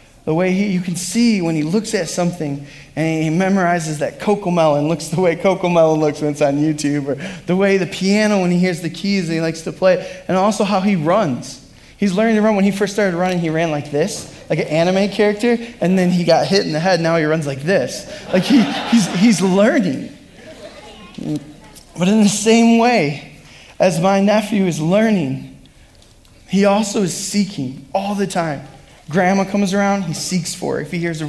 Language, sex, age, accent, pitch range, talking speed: English, male, 20-39, American, 155-205 Hz, 215 wpm